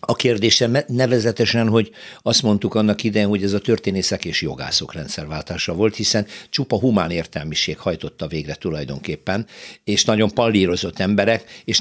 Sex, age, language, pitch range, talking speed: male, 60-79, Hungarian, 95-120 Hz, 140 wpm